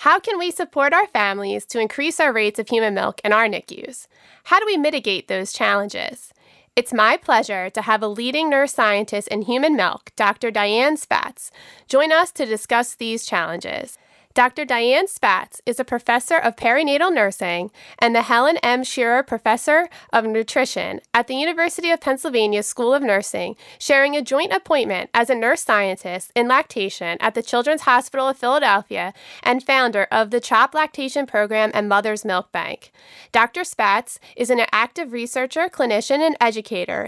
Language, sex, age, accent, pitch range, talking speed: English, female, 30-49, American, 215-280 Hz, 165 wpm